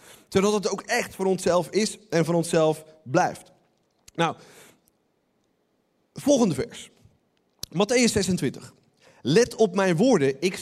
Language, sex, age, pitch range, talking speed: Dutch, male, 40-59, 135-205 Hz, 120 wpm